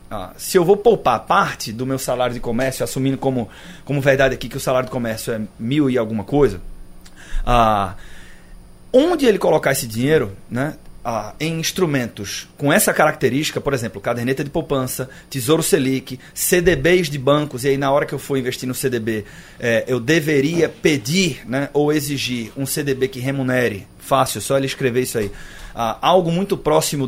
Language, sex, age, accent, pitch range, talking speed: Portuguese, male, 30-49, Brazilian, 125-165 Hz, 175 wpm